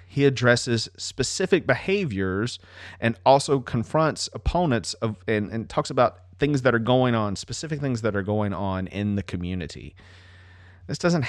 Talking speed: 155 wpm